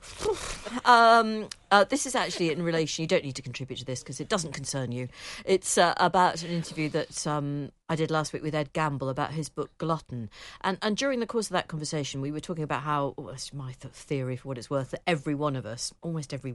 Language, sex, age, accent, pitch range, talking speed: English, female, 50-69, British, 130-160 Hz, 235 wpm